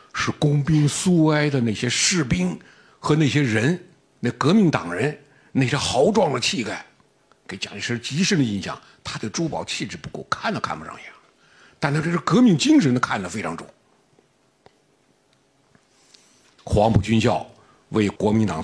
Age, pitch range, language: 50-69, 115-155 Hz, Chinese